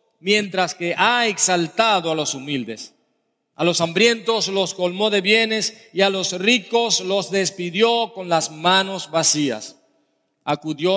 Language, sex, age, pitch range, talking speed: English, male, 40-59, 180-210 Hz, 135 wpm